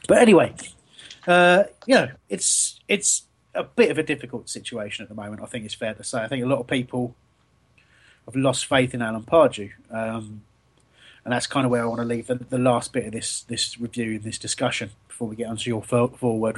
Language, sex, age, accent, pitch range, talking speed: English, male, 30-49, British, 115-140 Hz, 220 wpm